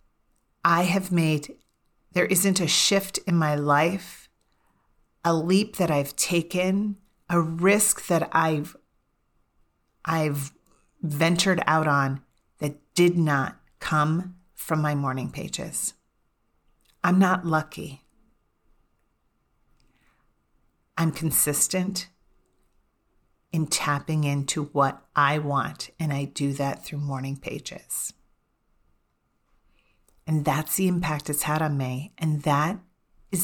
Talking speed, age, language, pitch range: 110 wpm, 40-59, English, 150-185 Hz